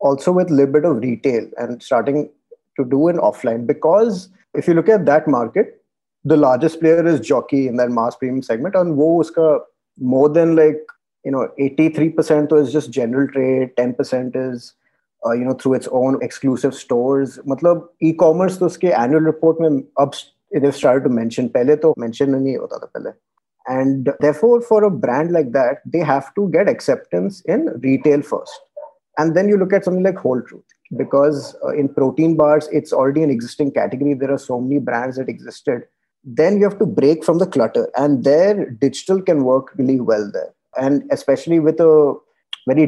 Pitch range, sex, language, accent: 130-175 Hz, male, Hindi, native